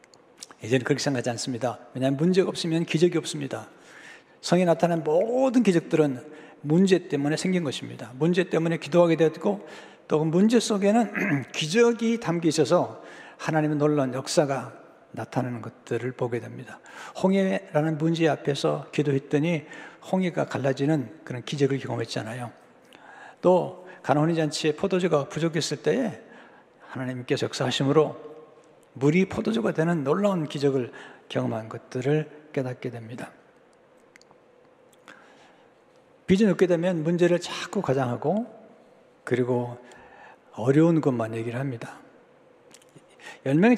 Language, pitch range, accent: Korean, 135-175 Hz, native